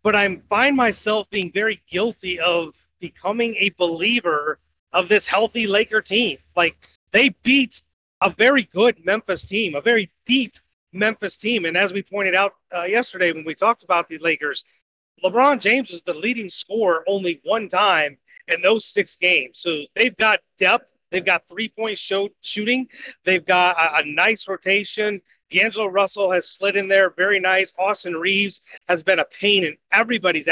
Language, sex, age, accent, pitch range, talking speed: English, male, 30-49, American, 175-235 Hz, 170 wpm